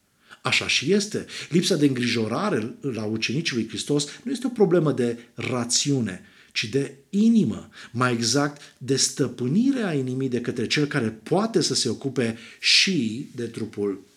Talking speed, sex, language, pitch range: 150 wpm, male, Romanian, 120-170 Hz